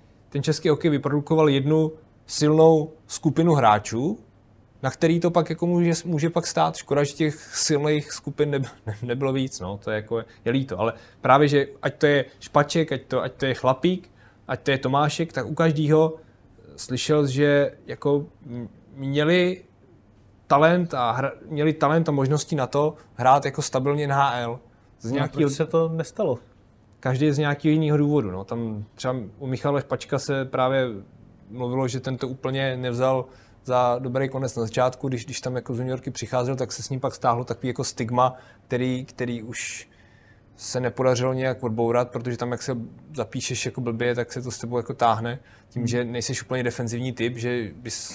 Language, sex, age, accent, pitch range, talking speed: Czech, male, 20-39, native, 115-145 Hz, 180 wpm